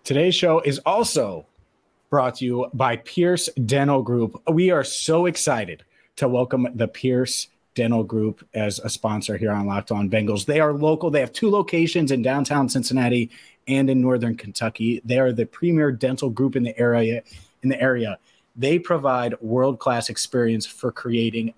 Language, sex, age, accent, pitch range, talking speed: English, male, 30-49, American, 110-140 Hz, 170 wpm